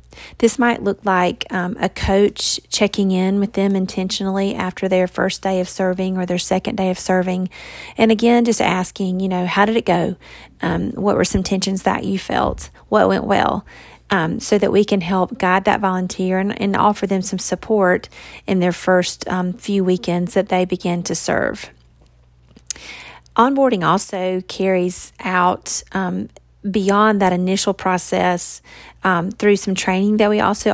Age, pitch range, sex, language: 40-59, 185-200 Hz, female, English